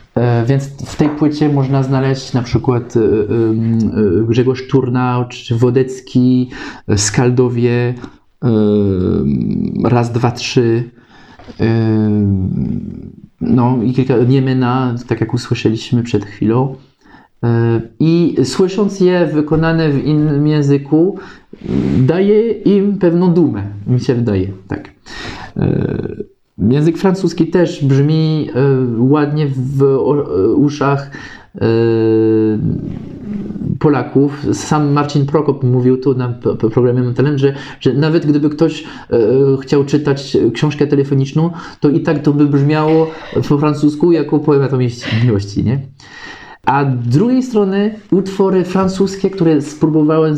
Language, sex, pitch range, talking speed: Polish, male, 120-155 Hz, 110 wpm